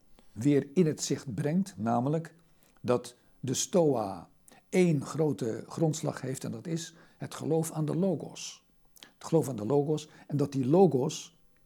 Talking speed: 155 wpm